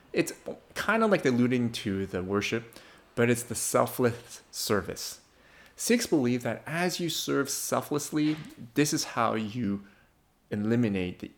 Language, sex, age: English, male, 30-49